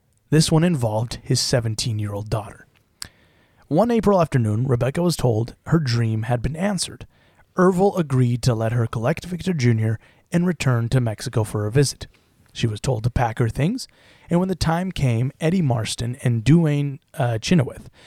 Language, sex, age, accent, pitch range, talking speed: English, male, 30-49, American, 115-145 Hz, 165 wpm